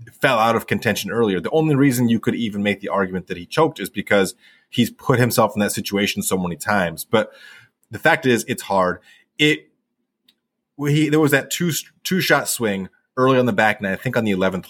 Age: 30-49